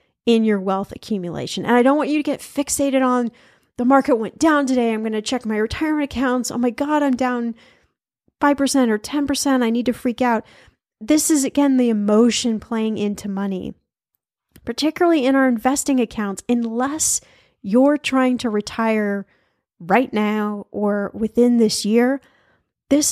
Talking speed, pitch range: 165 wpm, 205-260 Hz